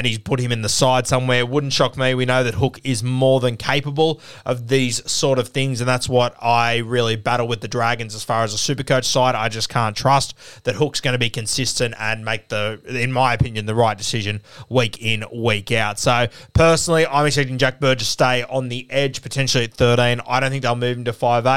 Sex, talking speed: male, 230 wpm